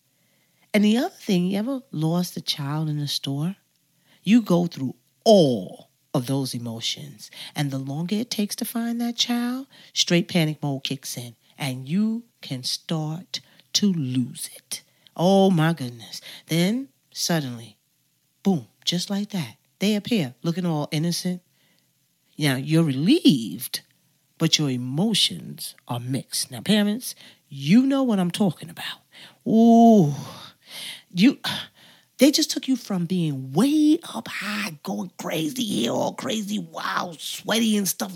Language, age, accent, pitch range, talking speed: English, 40-59, American, 145-215 Hz, 140 wpm